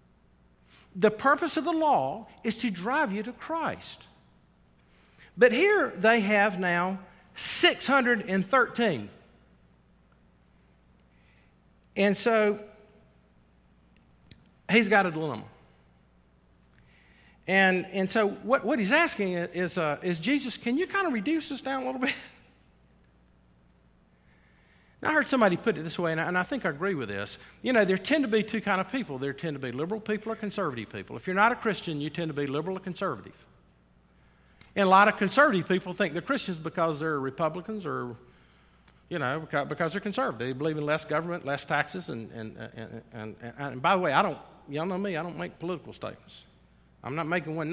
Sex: male